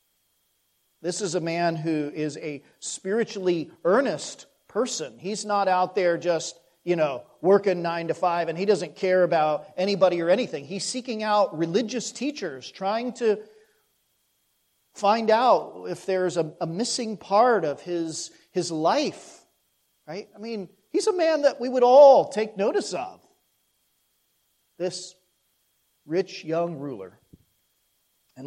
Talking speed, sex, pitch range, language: 140 wpm, male, 155-220 Hz, English